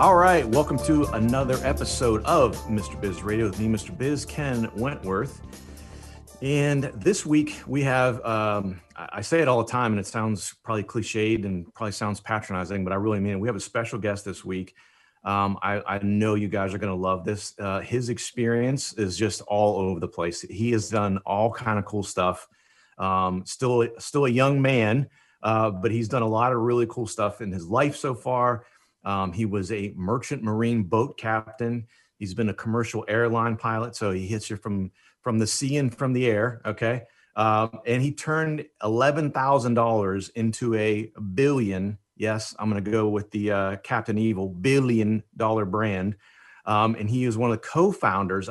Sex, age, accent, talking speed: male, 40-59, American, 190 wpm